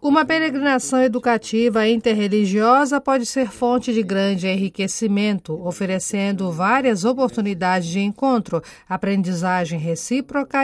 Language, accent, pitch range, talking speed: Portuguese, Brazilian, 190-245 Hz, 95 wpm